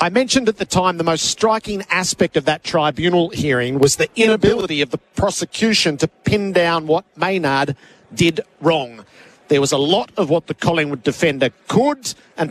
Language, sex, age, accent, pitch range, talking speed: English, male, 50-69, Australian, 155-210 Hz, 175 wpm